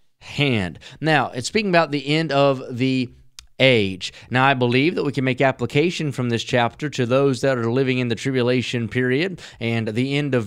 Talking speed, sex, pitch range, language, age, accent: 195 wpm, male, 130-165 Hz, English, 30-49, American